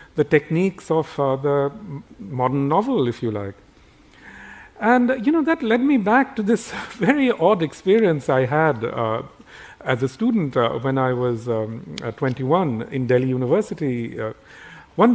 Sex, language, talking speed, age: male, English, 155 wpm, 50-69